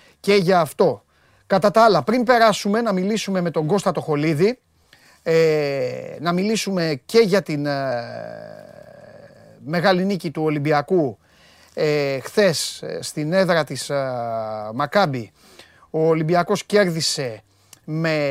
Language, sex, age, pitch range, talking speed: Greek, male, 30-49, 140-180 Hz, 120 wpm